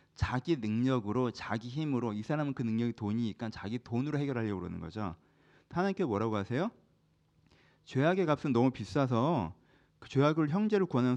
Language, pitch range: Korean, 115-170 Hz